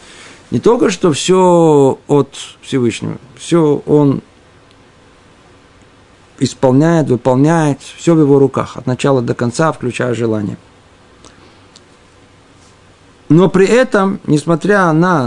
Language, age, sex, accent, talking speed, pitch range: Russian, 50-69, male, native, 100 wpm, 135-190 Hz